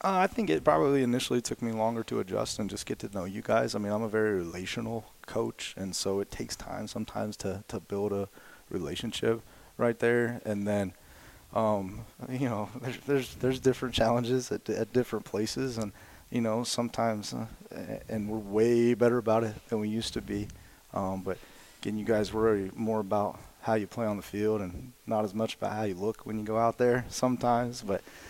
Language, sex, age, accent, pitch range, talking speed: English, male, 30-49, American, 95-115 Hz, 205 wpm